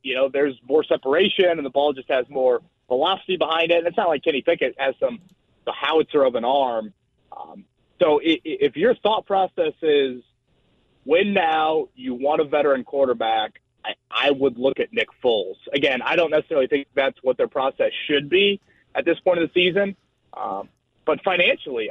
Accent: American